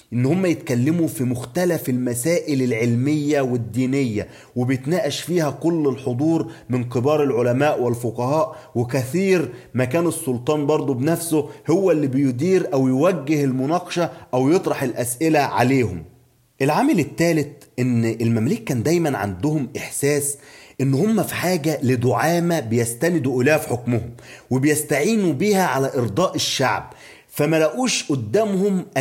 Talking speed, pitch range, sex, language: 120 wpm, 125-160 Hz, male, Arabic